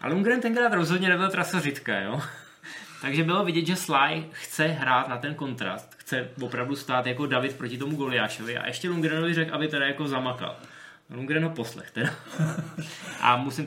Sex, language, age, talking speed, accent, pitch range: male, Czech, 20-39, 170 wpm, native, 130-160 Hz